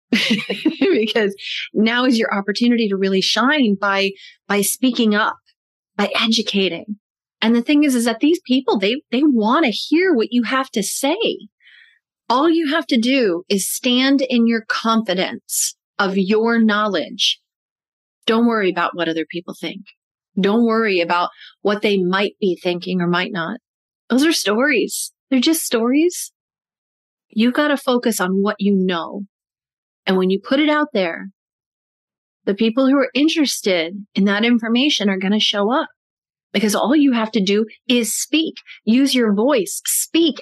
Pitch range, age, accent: 200-270 Hz, 30-49, American